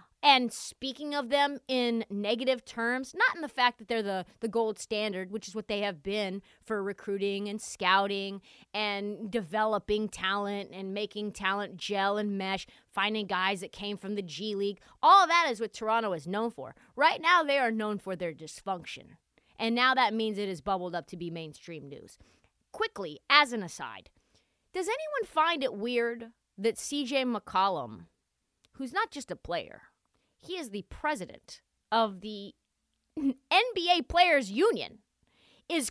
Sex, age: female, 30-49